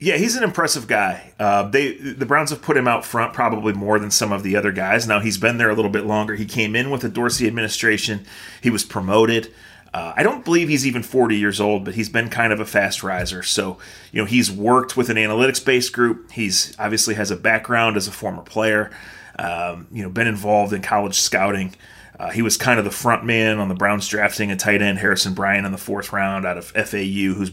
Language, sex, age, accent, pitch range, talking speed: English, male, 30-49, American, 100-125 Hz, 235 wpm